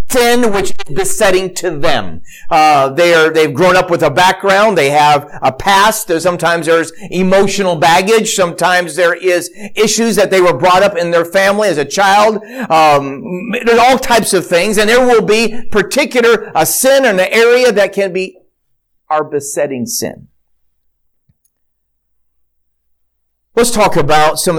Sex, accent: male, American